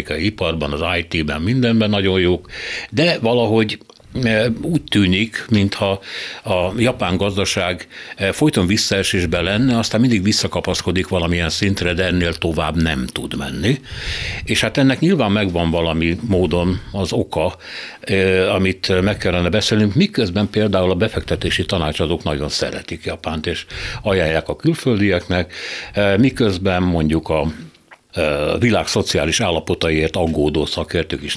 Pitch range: 85-105 Hz